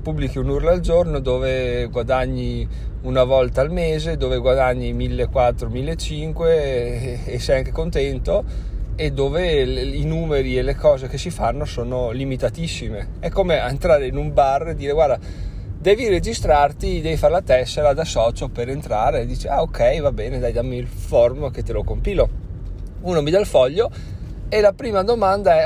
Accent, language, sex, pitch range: native, Italian, male, 120-160 Hz